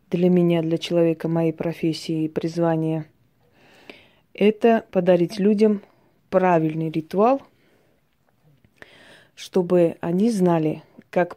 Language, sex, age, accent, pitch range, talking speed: Russian, female, 20-39, native, 165-195 Hz, 90 wpm